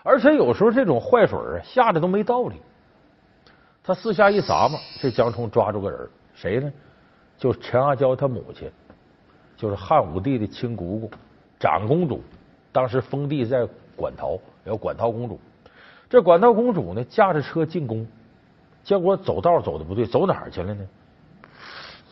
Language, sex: Chinese, male